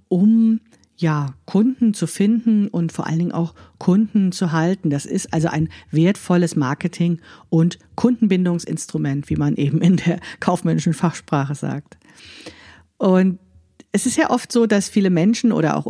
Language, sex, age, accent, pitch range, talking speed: German, female, 50-69, German, 165-210 Hz, 150 wpm